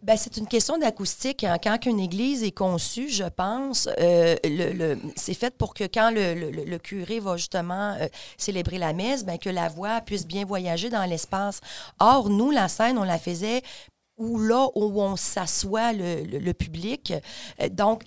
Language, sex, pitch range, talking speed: French, female, 185-225 Hz, 190 wpm